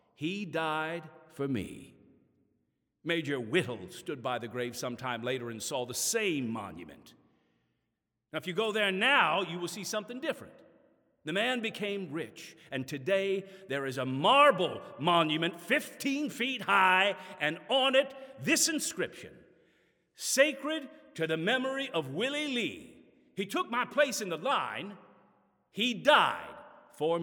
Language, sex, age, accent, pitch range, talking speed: English, male, 50-69, American, 135-215 Hz, 140 wpm